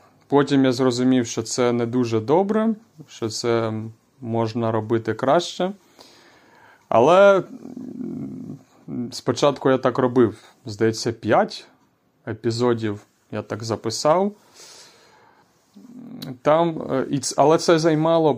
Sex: male